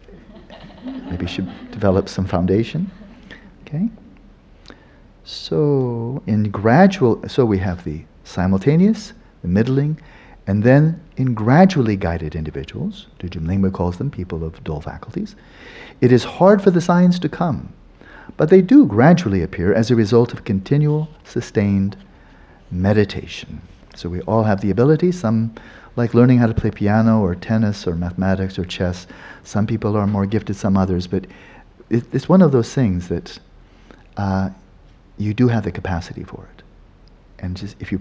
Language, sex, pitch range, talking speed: English, male, 90-125 Hz, 150 wpm